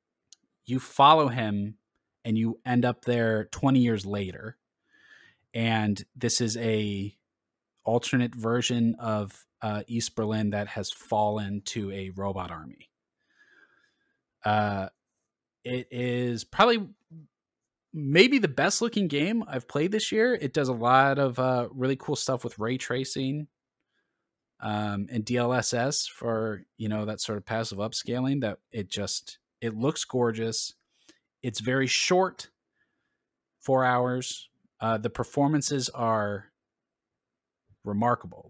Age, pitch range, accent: 20-39, 110-135 Hz, American